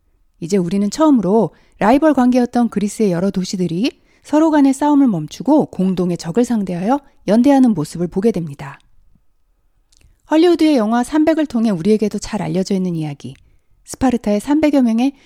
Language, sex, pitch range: Korean, female, 175-275 Hz